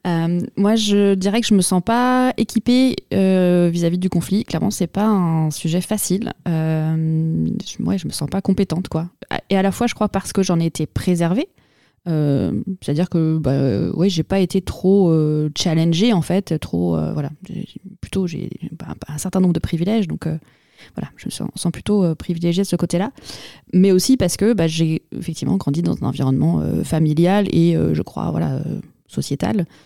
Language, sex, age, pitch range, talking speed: French, female, 20-39, 165-205 Hz, 205 wpm